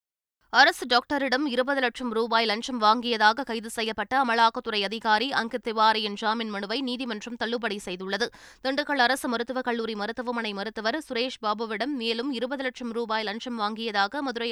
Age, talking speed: 20-39, 130 wpm